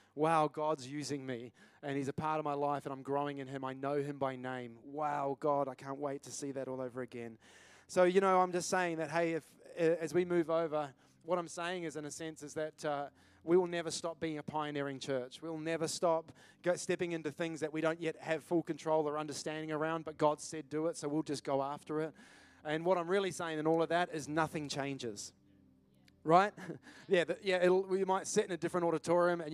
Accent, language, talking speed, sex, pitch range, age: Australian, English, 230 wpm, male, 140-165 Hz, 20-39